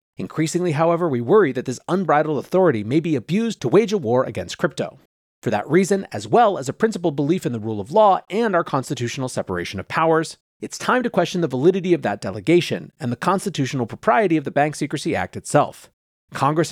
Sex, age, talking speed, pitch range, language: male, 30-49, 205 wpm, 130-180 Hz, English